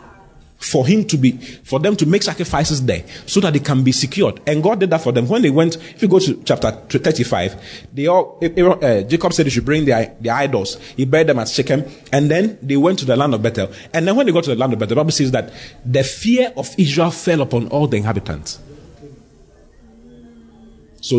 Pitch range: 115-170 Hz